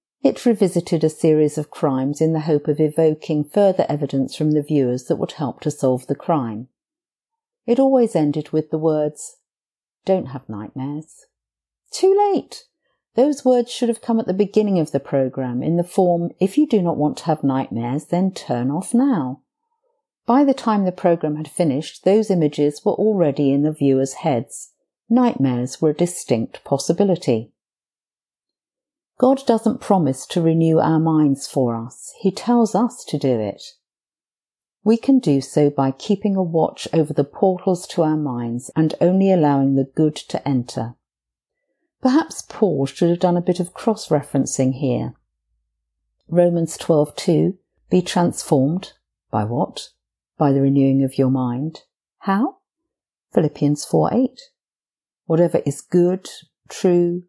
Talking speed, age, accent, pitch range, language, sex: 155 wpm, 50-69, British, 140-195 Hz, English, female